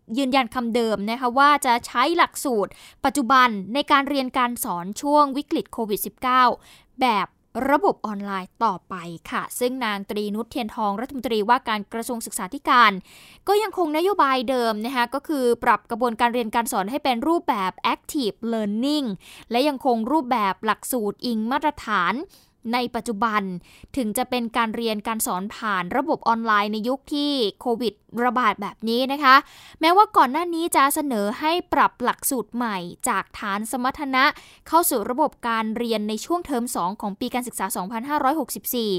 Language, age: Thai, 20-39